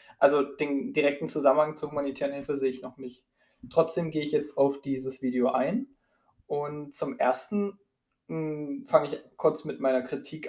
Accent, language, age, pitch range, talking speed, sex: German, German, 20-39, 135-160 Hz, 165 wpm, male